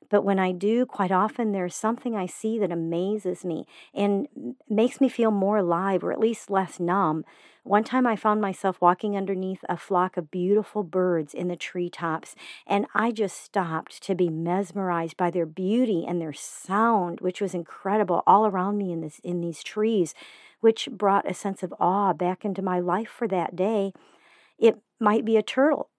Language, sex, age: English, female, 50-69